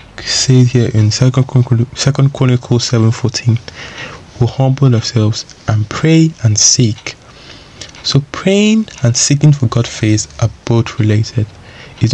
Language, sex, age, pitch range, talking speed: English, male, 20-39, 110-125 Hz, 125 wpm